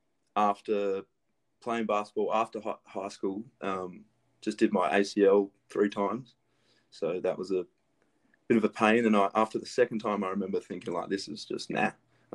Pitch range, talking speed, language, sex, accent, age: 100-110 Hz, 175 wpm, English, male, Australian, 20-39